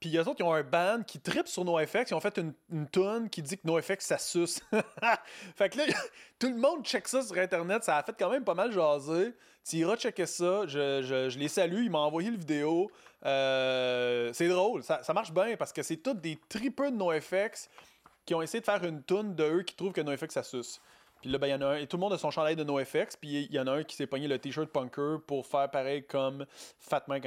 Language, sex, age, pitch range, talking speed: French, male, 30-49, 145-195 Hz, 265 wpm